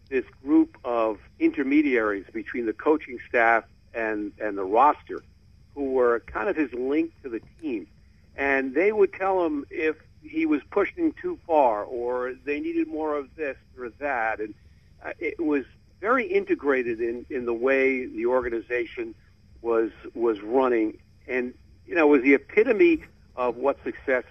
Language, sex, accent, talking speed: English, male, American, 160 wpm